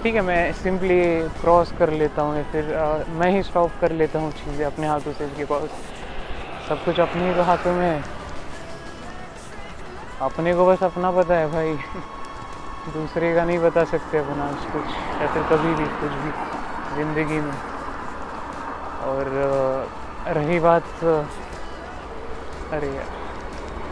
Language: Marathi